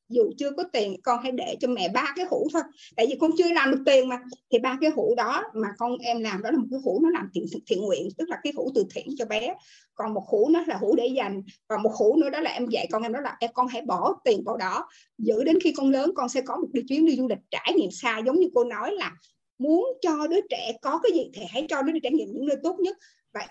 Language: Vietnamese